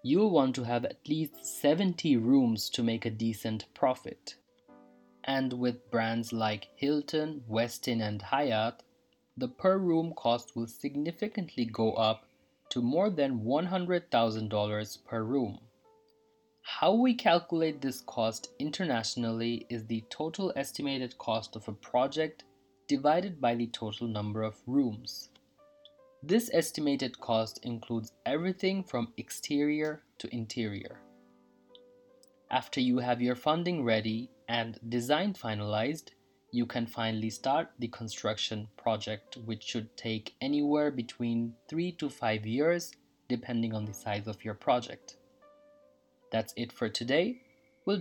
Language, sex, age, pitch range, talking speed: English, male, 20-39, 115-165 Hz, 125 wpm